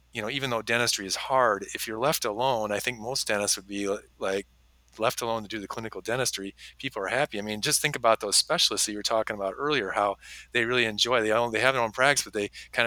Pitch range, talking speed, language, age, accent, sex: 95-115 Hz, 250 wpm, English, 40-59, American, male